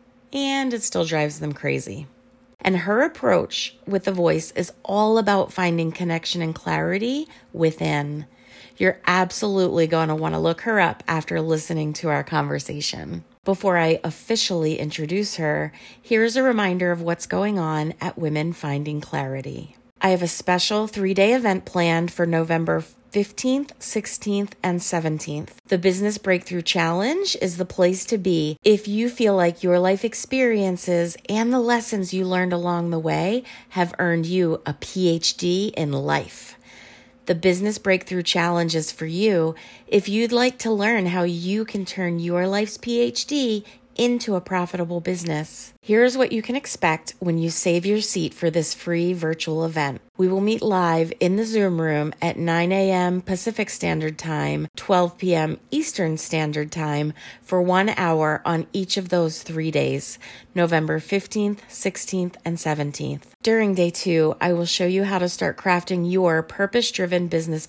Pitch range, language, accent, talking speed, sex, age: 160-205 Hz, English, American, 160 wpm, female, 30-49